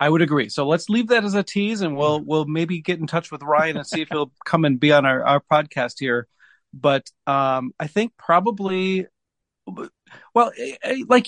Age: 40-59